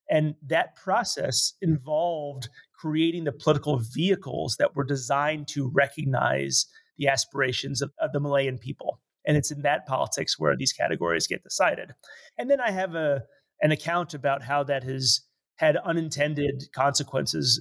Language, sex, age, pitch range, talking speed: English, male, 30-49, 135-170 Hz, 150 wpm